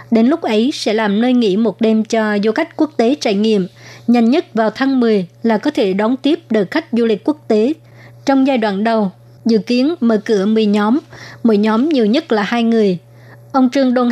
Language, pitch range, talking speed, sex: Vietnamese, 210-245 Hz, 220 wpm, male